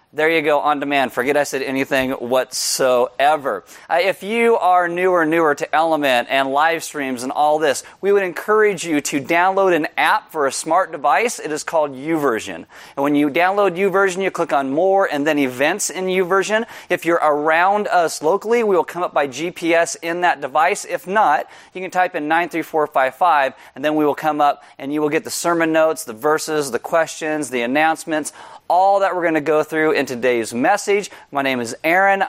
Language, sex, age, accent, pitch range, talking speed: English, male, 30-49, American, 145-180 Hz, 200 wpm